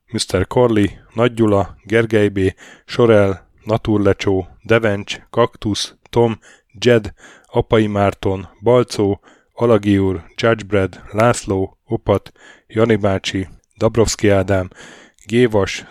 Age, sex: 10-29, male